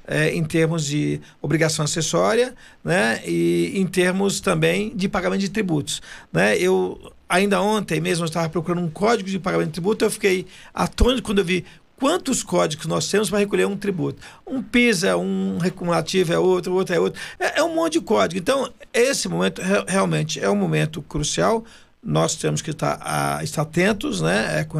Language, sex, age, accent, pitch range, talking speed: Portuguese, male, 50-69, Brazilian, 165-200 Hz, 175 wpm